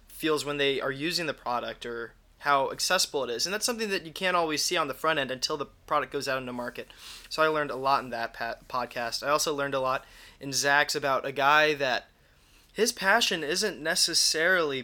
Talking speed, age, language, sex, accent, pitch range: 220 wpm, 20-39, English, male, American, 125-155 Hz